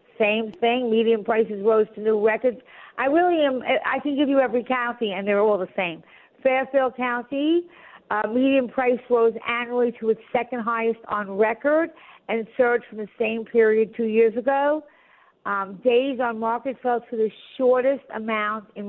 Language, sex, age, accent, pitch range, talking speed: English, female, 50-69, American, 210-260 Hz, 170 wpm